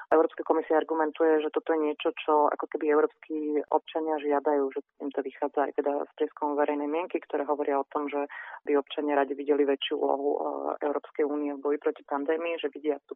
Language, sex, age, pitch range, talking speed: Slovak, female, 30-49, 145-155 Hz, 190 wpm